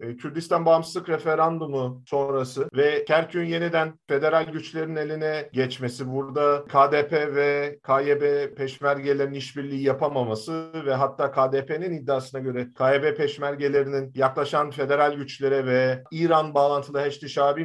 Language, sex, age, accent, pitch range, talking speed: Turkish, male, 40-59, native, 130-160 Hz, 110 wpm